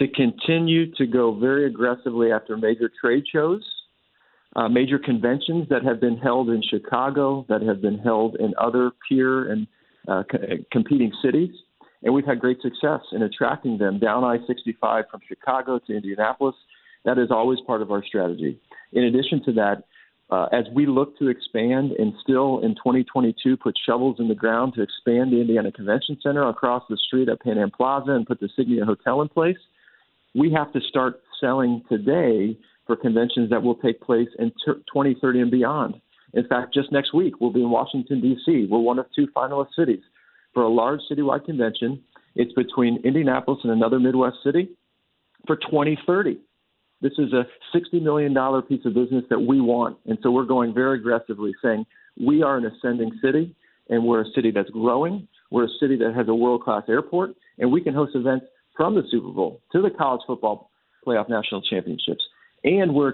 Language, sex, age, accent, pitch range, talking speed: English, male, 50-69, American, 115-140 Hz, 180 wpm